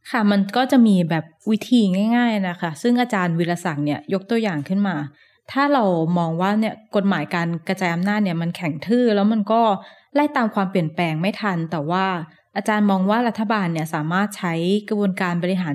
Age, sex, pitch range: 20-39, female, 180-225 Hz